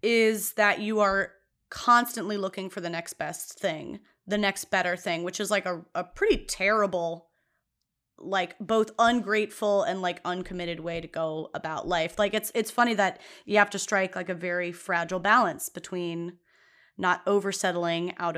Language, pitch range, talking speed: English, 175-220 Hz, 165 wpm